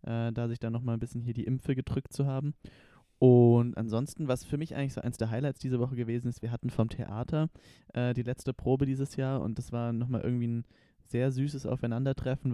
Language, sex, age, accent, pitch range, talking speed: German, male, 20-39, German, 115-135 Hz, 215 wpm